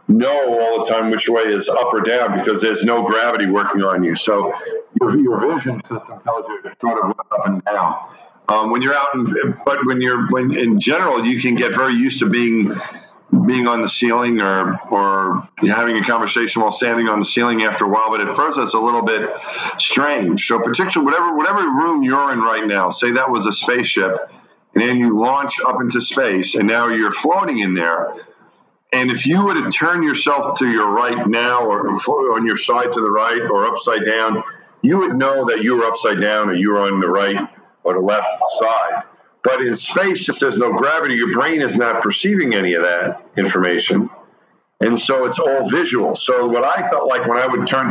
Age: 50-69